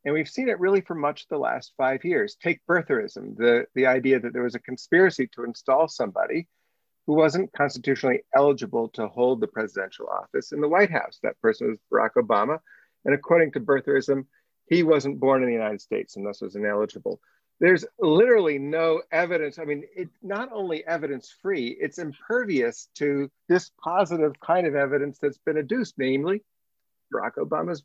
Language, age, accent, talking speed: English, 50-69, American, 175 wpm